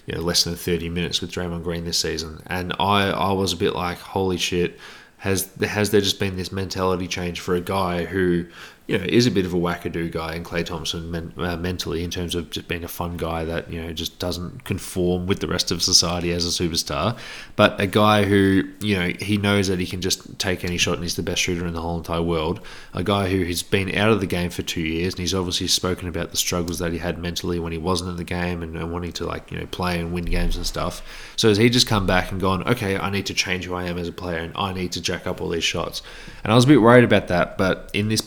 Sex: male